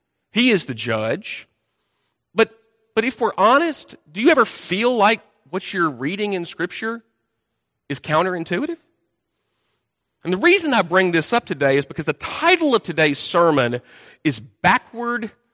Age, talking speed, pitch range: 40-59, 145 wpm, 170-265 Hz